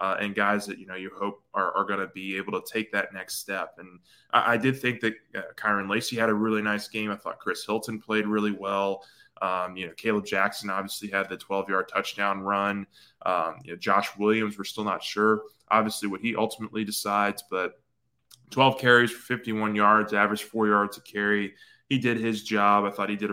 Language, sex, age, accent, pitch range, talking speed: English, male, 20-39, American, 100-110 Hz, 215 wpm